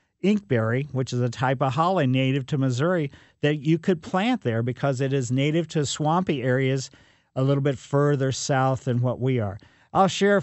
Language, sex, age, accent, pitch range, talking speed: English, male, 50-69, American, 135-180 Hz, 190 wpm